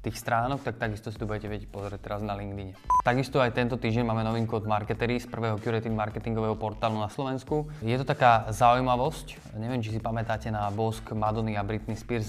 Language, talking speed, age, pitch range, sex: Slovak, 190 wpm, 20-39, 105-120 Hz, male